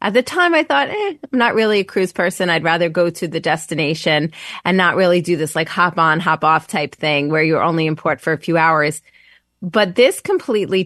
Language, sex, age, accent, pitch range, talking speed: English, female, 30-49, American, 165-205 Hz, 230 wpm